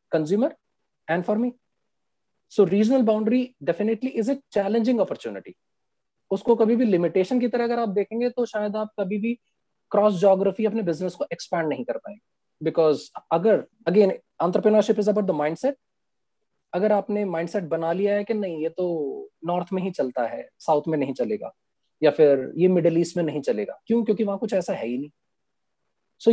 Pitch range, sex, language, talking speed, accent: 170-220 Hz, male, Hindi, 155 wpm, native